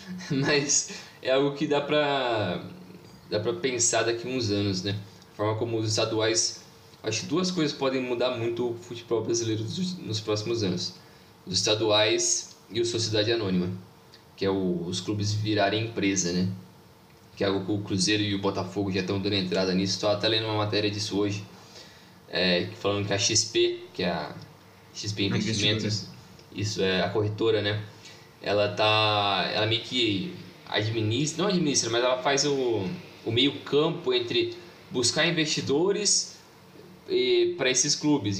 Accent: Brazilian